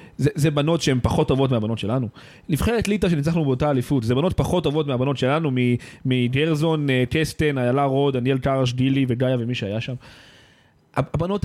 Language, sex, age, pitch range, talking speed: Hebrew, male, 30-49, 135-180 Hz, 160 wpm